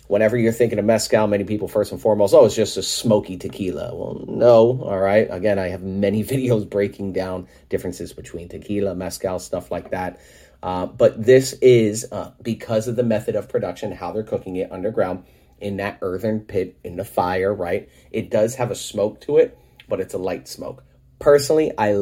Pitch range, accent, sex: 100-130 Hz, American, male